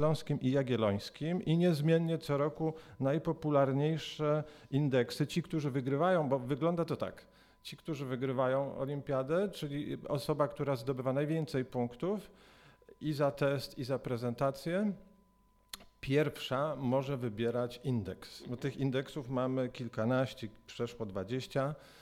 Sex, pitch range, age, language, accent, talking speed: male, 120-150 Hz, 40-59, Polish, native, 115 wpm